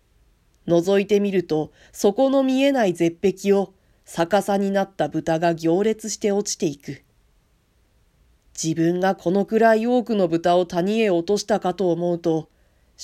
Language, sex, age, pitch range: Japanese, female, 40-59, 165-220 Hz